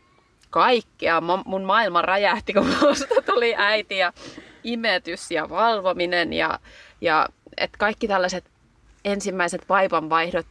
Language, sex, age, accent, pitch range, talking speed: Finnish, female, 30-49, native, 195-310 Hz, 95 wpm